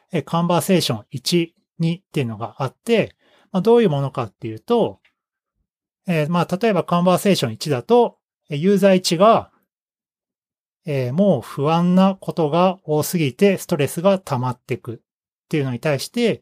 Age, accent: 40-59, native